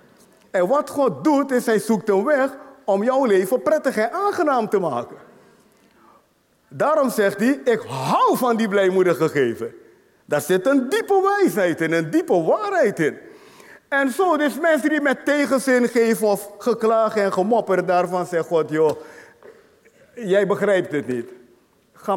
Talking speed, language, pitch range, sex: 155 wpm, Dutch, 205-275 Hz, male